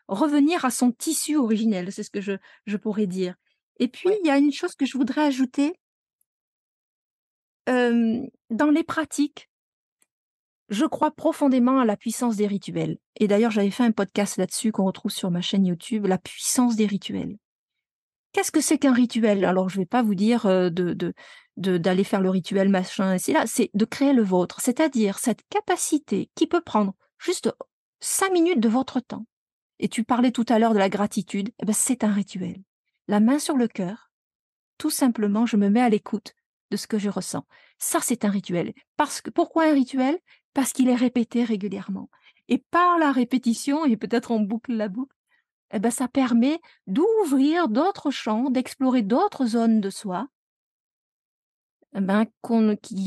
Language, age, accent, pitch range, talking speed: French, 40-59, French, 205-270 Hz, 175 wpm